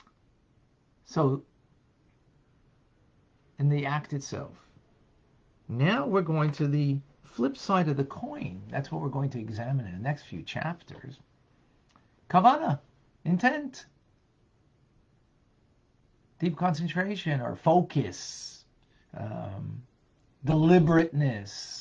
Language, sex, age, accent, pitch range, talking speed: English, male, 50-69, American, 120-145 Hz, 95 wpm